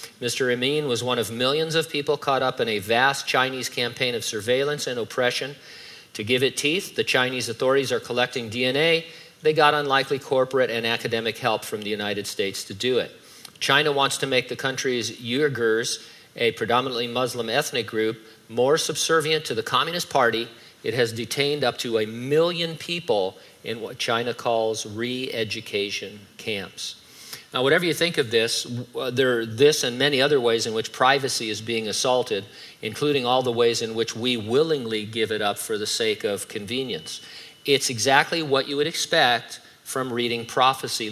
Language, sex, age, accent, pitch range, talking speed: English, male, 50-69, American, 115-140 Hz, 175 wpm